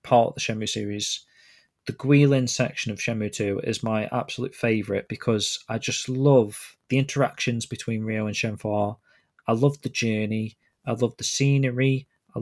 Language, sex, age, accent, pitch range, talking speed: English, male, 20-39, British, 110-130 Hz, 165 wpm